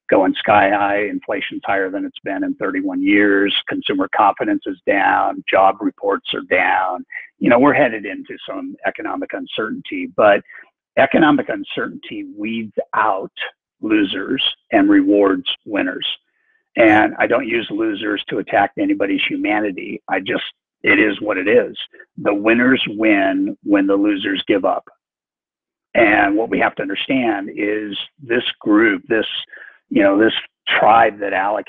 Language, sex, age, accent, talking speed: English, male, 50-69, American, 145 wpm